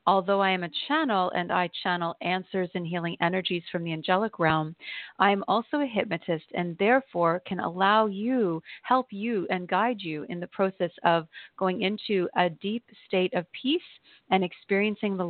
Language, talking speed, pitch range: English, 175 wpm, 175-200 Hz